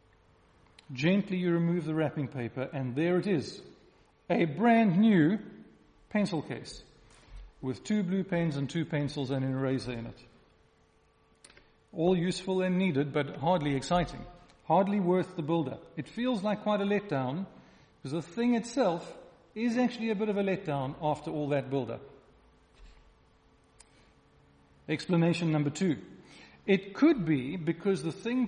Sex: male